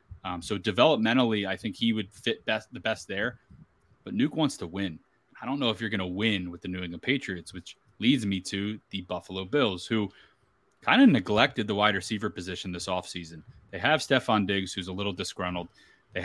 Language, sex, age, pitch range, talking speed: English, male, 20-39, 95-120 Hz, 210 wpm